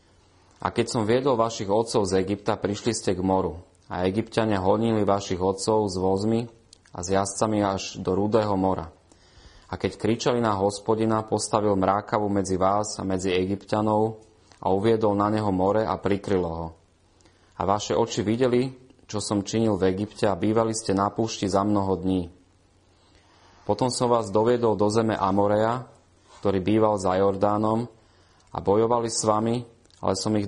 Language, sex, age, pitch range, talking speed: Slovak, male, 30-49, 95-110 Hz, 160 wpm